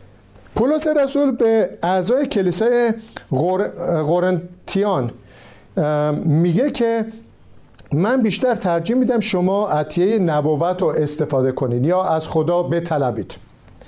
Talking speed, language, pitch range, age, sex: 95 wpm, Persian, 160-225 Hz, 50-69, male